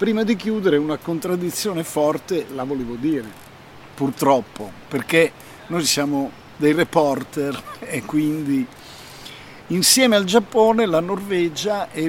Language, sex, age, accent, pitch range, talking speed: Italian, male, 50-69, native, 140-195 Hz, 115 wpm